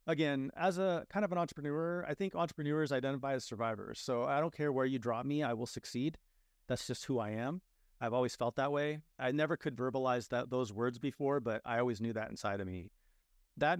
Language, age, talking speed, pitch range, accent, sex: English, 30-49, 220 wpm, 110-140 Hz, American, male